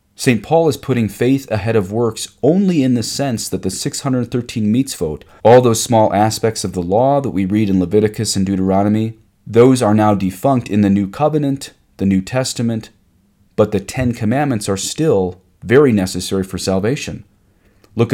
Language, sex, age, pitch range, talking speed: English, male, 30-49, 95-115 Hz, 170 wpm